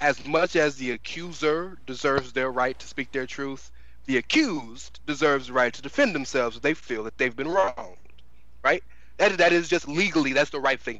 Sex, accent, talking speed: male, American, 200 wpm